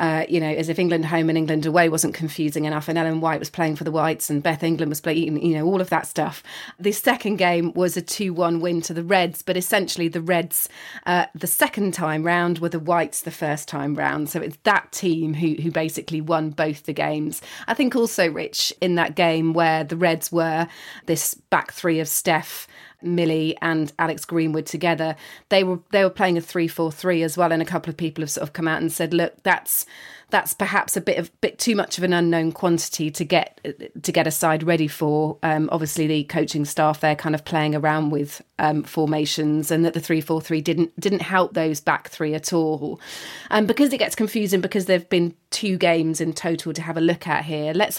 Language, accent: English, British